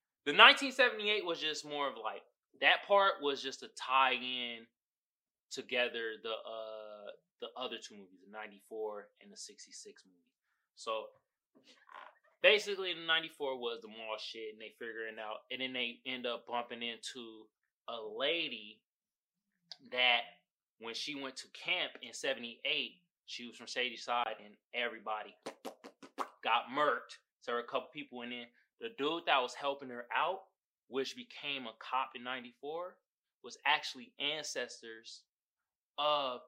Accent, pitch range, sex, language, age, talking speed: American, 120-180 Hz, male, English, 20-39, 150 wpm